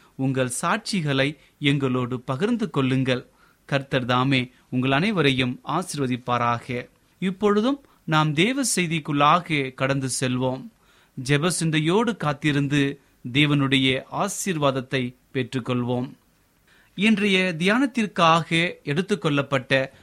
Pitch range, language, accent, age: 135-195 Hz, Tamil, native, 30-49